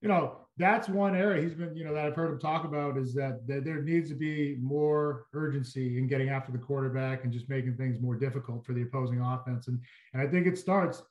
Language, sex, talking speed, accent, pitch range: English, male, 245 wpm, American, 135-175 Hz